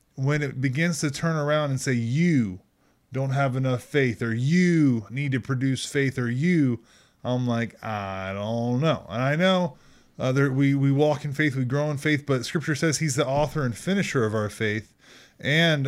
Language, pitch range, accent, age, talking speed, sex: English, 125-150 Hz, American, 20-39, 195 wpm, male